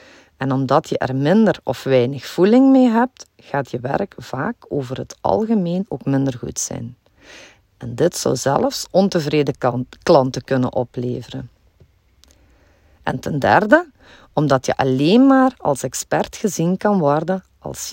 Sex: female